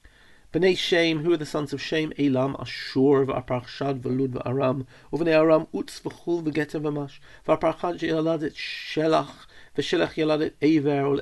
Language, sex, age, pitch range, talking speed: English, male, 40-59, 125-155 Hz, 140 wpm